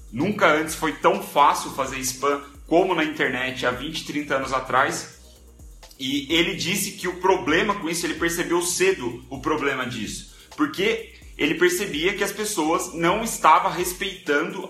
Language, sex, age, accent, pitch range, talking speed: Portuguese, male, 30-49, Brazilian, 130-175 Hz, 155 wpm